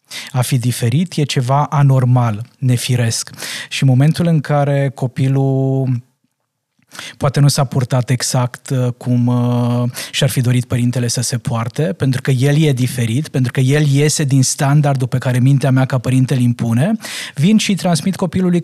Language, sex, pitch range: Romanian, male, 125-150 Hz